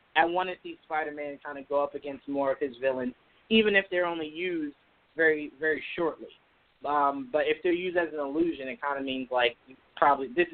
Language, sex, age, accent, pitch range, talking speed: English, male, 30-49, American, 145-175 Hz, 210 wpm